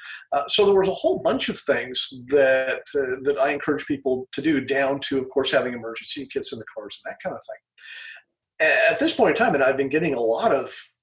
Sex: male